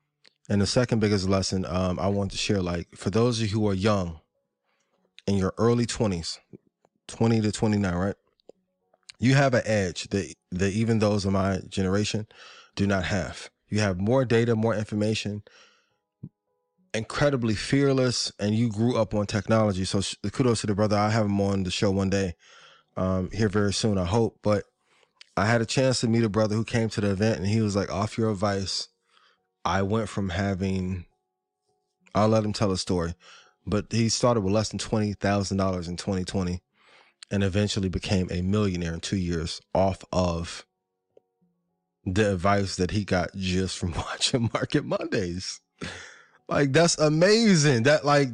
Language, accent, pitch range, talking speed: English, American, 95-115 Hz, 170 wpm